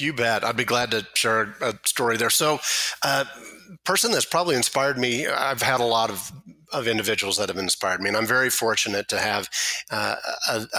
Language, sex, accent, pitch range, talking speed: English, male, American, 105-120 Hz, 195 wpm